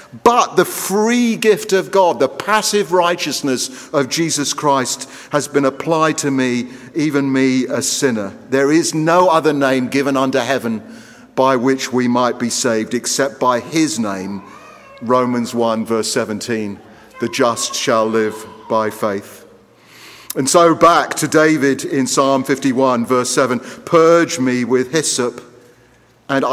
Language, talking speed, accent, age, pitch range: Russian, 145 wpm, British, 50-69, 130-175 Hz